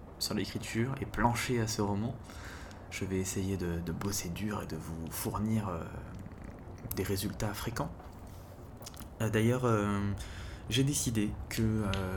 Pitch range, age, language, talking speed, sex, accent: 95-110 Hz, 20-39, French, 140 wpm, male, French